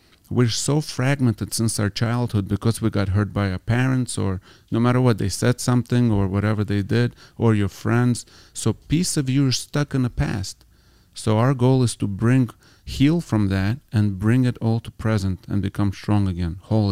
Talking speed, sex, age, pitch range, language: 200 wpm, male, 40-59, 100-120 Hz, English